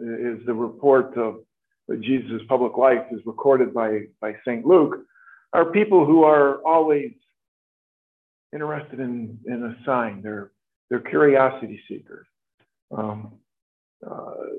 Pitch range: 110-140 Hz